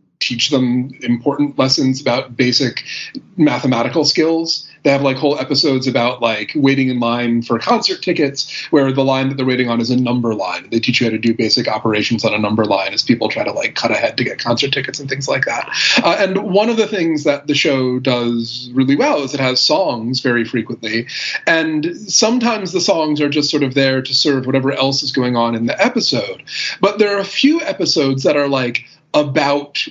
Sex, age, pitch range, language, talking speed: male, 30-49, 120-150 Hz, English, 215 wpm